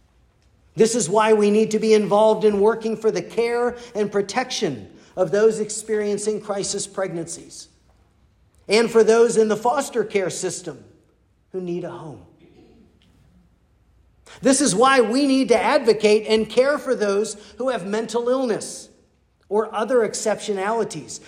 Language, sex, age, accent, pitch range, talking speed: English, male, 50-69, American, 155-220 Hz, 140 wpm